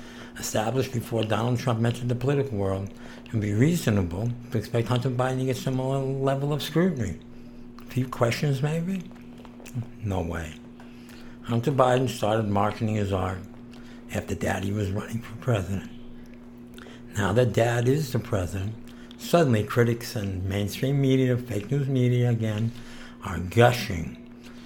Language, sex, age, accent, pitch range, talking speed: English, male, 60-79, American, 100-120 Hz, 140 wpm